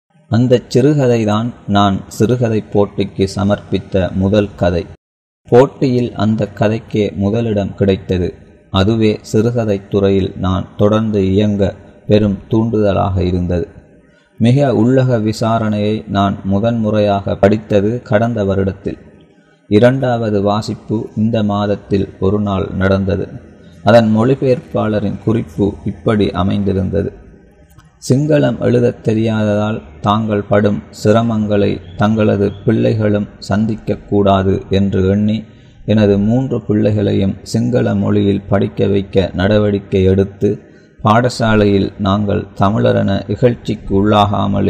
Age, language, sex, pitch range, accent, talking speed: 30-49, Tamil, male, 100-110 Hz, native, 90 wpm